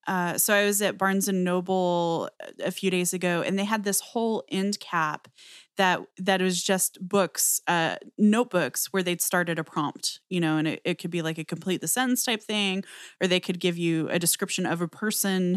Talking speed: 215 wpm